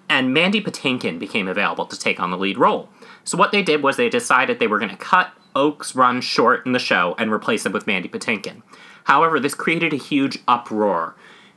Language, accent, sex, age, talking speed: English, American, male, 30-49, 215 wpm